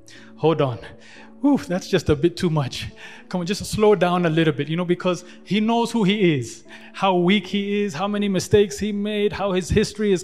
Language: English